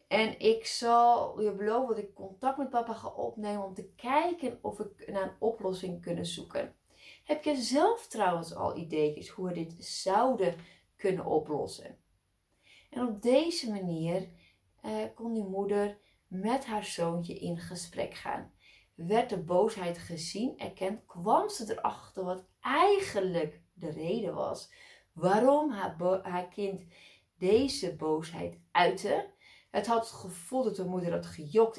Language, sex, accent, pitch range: Dutch, female, Dutch, 170-225 Hz